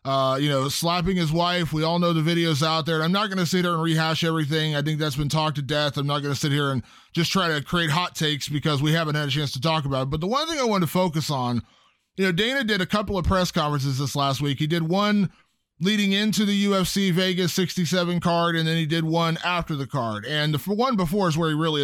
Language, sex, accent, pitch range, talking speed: English, male, American, 155-185 Hz, 270 wpm